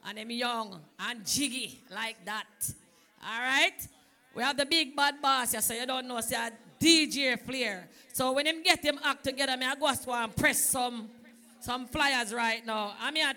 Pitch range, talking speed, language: 255-300 Hz, 185 wpm, English